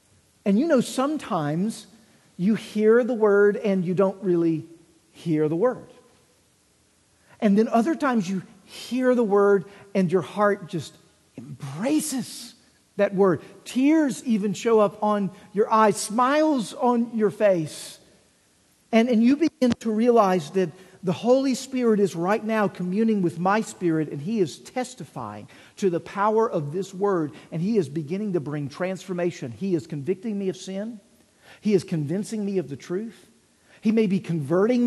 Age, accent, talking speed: 50-69, American, 160 wpm